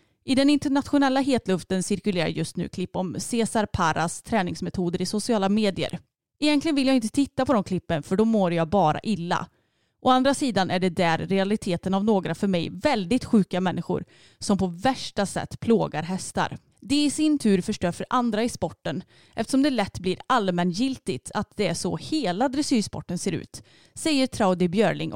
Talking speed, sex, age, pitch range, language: 180 wpm, female, 30-49, 175-240 Hz, Swedish